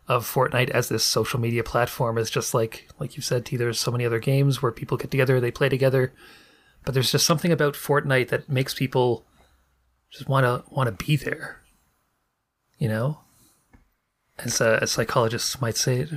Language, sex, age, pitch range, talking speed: English, male, 30-49, 115-140 Hz, 190 wpm